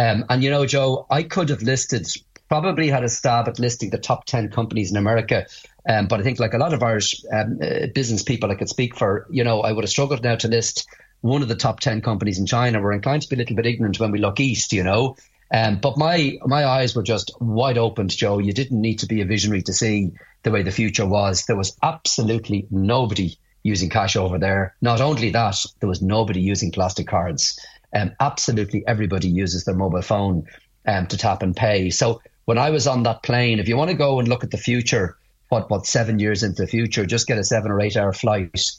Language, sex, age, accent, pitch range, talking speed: English, male, 30-49, Irish, 105-130 Hz, 235 wpm